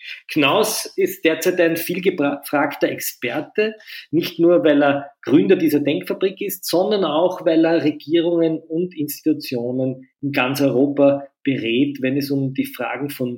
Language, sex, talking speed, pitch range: German, male, 140 wpm, 135-185 Hz